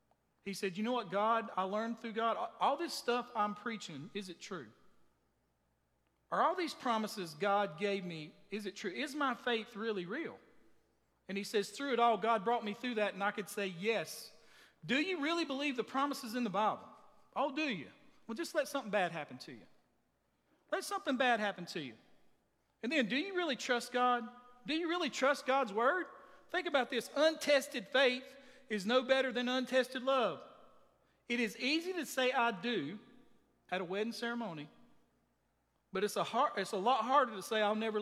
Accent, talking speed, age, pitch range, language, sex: American, 195 wpm, 40-59, 210-275 Hz, English, male